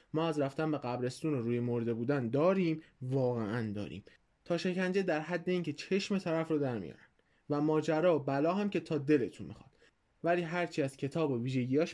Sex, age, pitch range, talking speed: male, 20-39, 135-170 Hz, 180 wpm